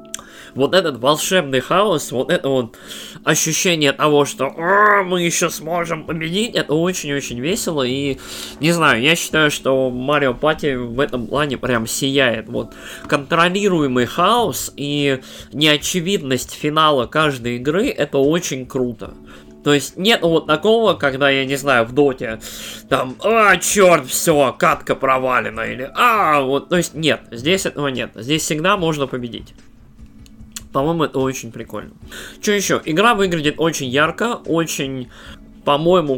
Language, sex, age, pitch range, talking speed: Russian, male, 20-39, 125-160 Hz, 140 wpm